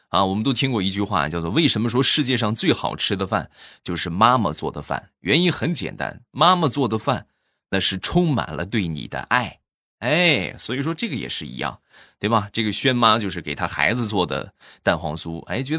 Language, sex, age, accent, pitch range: Chinese, male, 20-39, native, 90-145 Hz